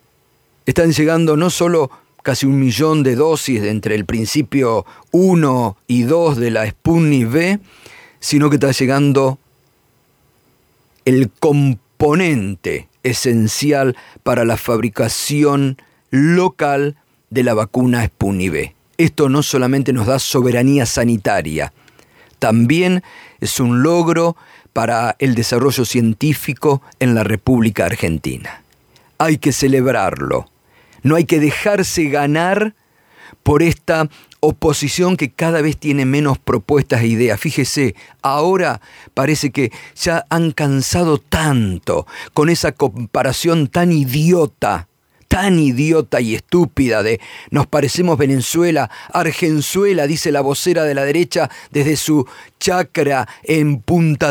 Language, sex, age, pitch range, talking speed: Spanish, male, 50-69, 125-160 Hz, 120 wpm